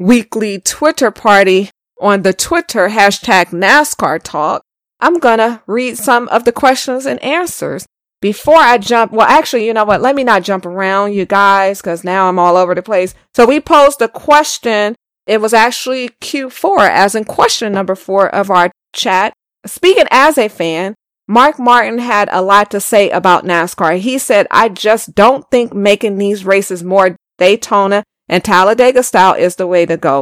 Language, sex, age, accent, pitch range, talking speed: English, female, 40-59, American, 190-245 Hz, 175 wpm